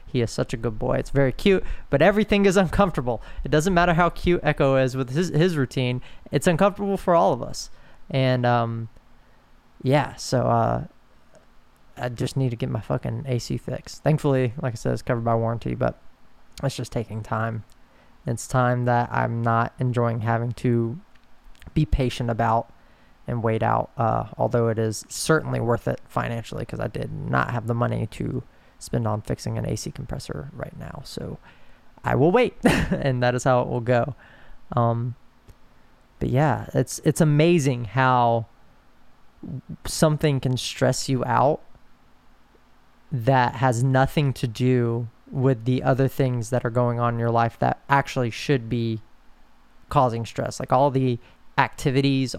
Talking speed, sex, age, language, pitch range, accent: 165 wpm, male, 20-39, English, 120-135 Hz, American